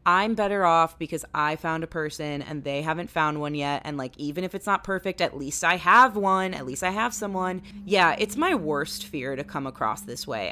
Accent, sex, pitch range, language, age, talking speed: American, female, 145-185 Hz, English, 20-39, 235 wpm